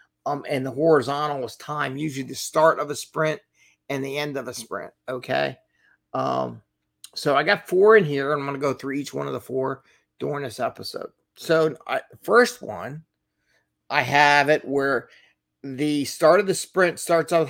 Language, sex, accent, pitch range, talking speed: English, male, American, 125-160 Hz, 185 wpm